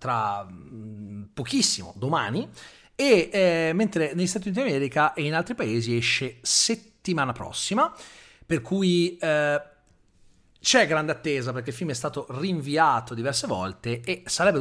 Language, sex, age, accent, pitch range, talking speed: Italian, male, 30-49, native, 120-155 Hz, 135 wpm